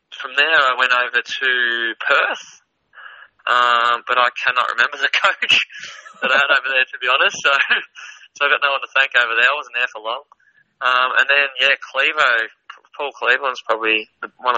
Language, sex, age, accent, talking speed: English, male, 20-39, Australian, 190 wpm